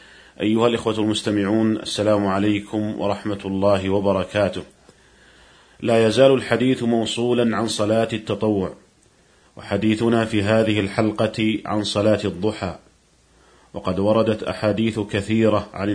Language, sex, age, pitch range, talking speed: Arabic, male, 40-59, 105-115 Hz, 100 wpm